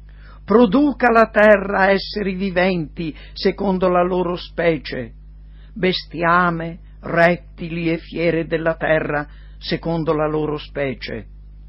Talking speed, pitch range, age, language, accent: 100 wpm, 140-200 Hz, 60-79, Italian, native